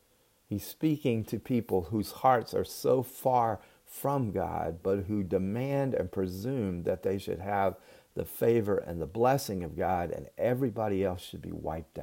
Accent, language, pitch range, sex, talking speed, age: American, English, 90-110 Hz, male, 165 wpm, 50-69